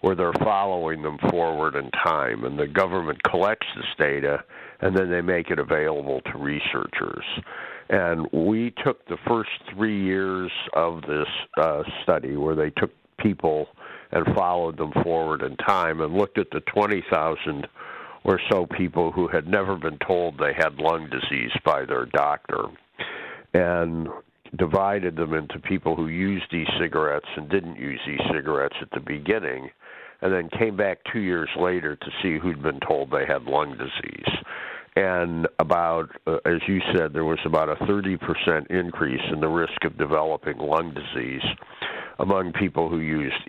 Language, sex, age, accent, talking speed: English, male, 60-79, American, 160 wpm